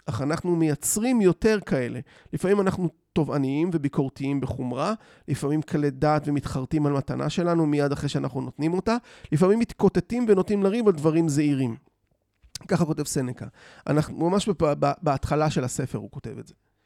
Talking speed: 140 wpm